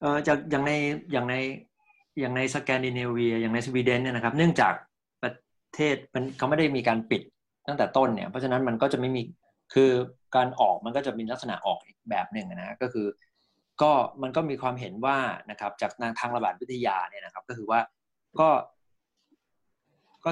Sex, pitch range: male, 120-145 Hz